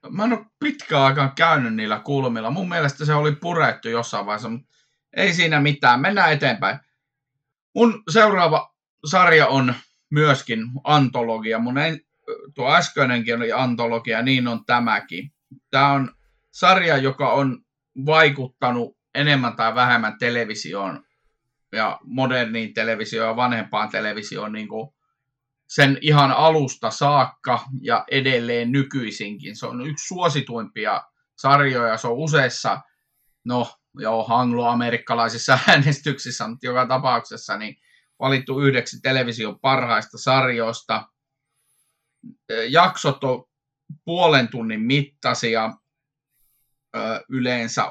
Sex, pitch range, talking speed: male, 115-145 Hz, 110 wpm